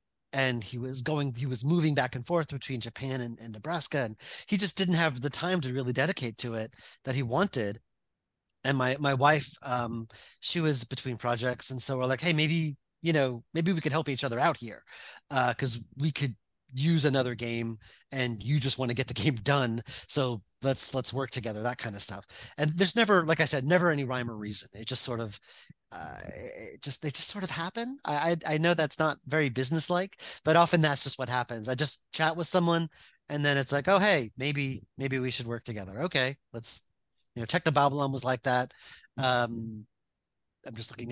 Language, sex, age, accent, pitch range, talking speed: English, male, 30-49, American, 120-155 Hz, 215 wpm